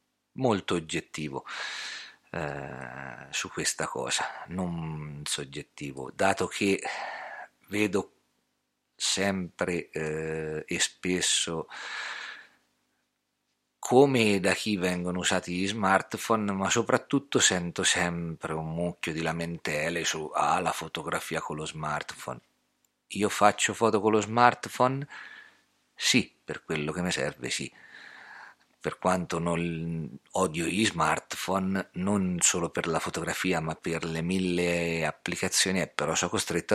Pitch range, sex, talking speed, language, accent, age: 85-120 Hz, male, 115 wpm, Italian, native, 50-69